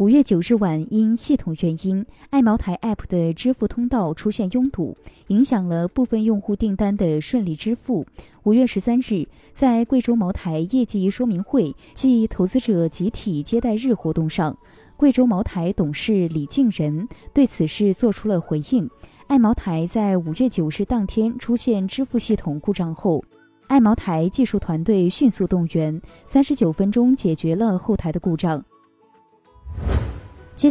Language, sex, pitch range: Chinese, female, 165-240 Hz